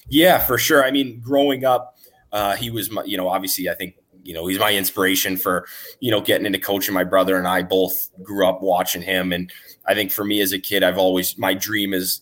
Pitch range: 95-110 Hz